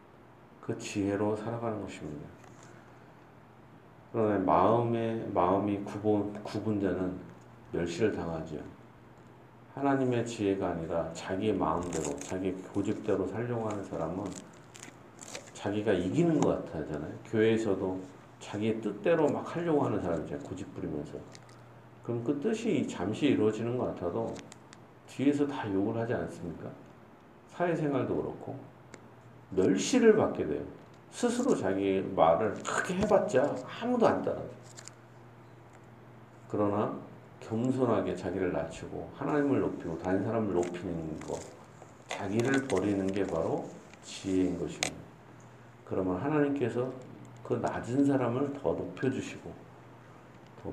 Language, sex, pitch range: Korean, male, 95-120 Hz